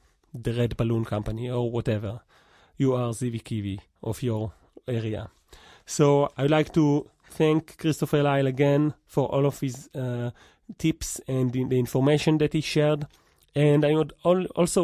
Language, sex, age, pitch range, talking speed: English, male, 30-49, 130-160 Hz, 145 wpm